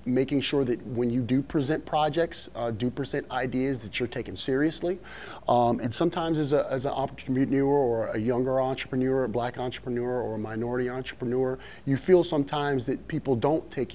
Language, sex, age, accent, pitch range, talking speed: English, male, 30-49, American, 120-140 Hz, 180 wpm